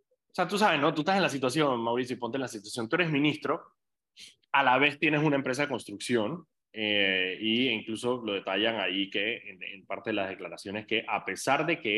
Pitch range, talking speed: 110-150 Hz, 220 wpm